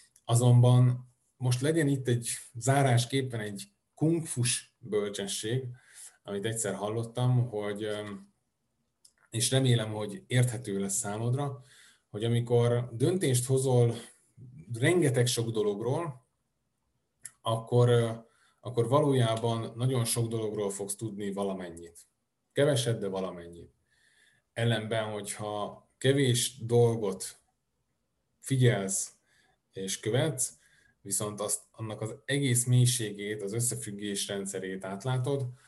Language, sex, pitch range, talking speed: Hungarian, male, 105-125 Hz, 90 wpm